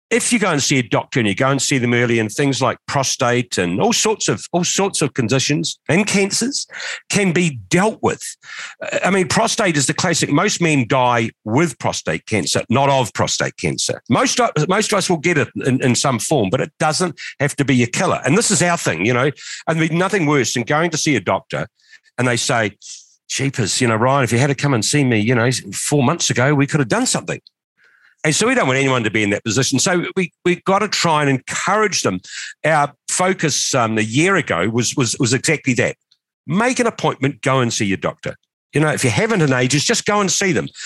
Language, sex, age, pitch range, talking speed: English, male, 50-69, 120-175 Hz, 235 wpm